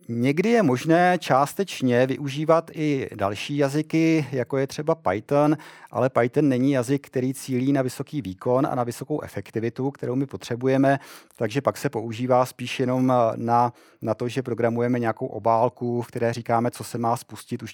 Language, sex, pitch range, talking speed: Czech, male, 110-130 Hz, 165 wpm